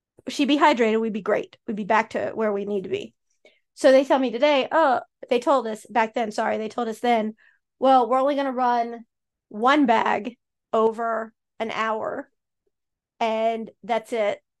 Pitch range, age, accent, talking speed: 215-265 Hz, 30-49, American, 185 wpm